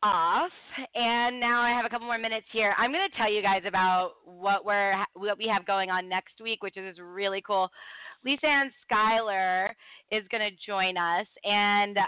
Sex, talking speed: female, 185 wpm